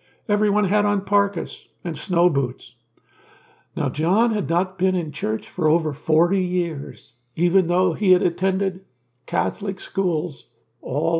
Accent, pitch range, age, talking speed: American, 145-185 Hz, 60-79, 140 wpm